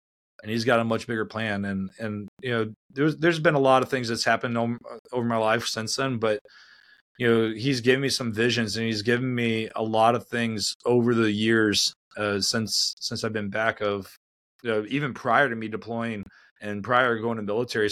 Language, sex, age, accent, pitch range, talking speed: English, male, 30-49, American, 110-120 Hz, 215 wpm